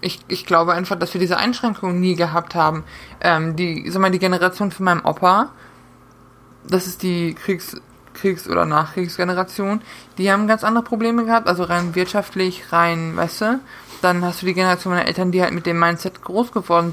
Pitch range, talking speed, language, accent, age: 170-195 Hz, 185 wpm, German, German, 20-39